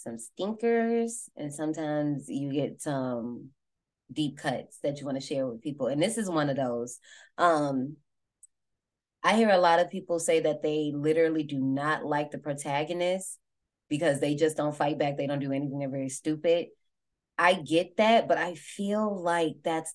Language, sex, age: English, female, 20-39